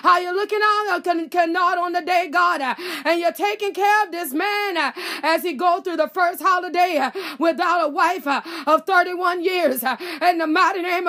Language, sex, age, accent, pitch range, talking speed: English, female, 30-49, American, 335-365 Hz, 210 wpm